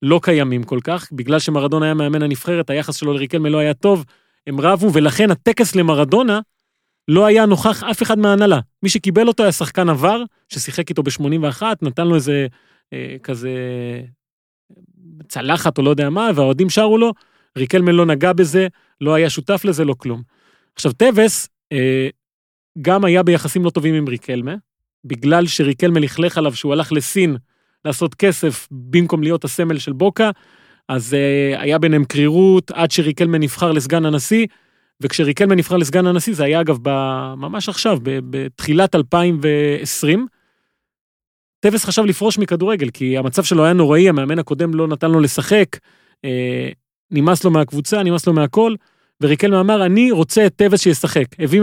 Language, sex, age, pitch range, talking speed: Hebrew, male, 30-49, 145-190 Hz, 155 wpm